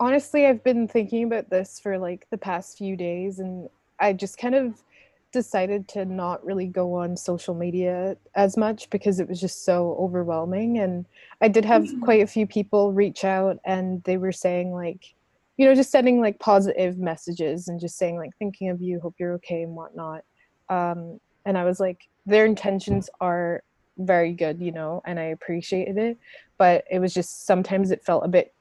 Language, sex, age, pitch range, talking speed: English, female, 20-39, 180-220 Hz, 195 wpm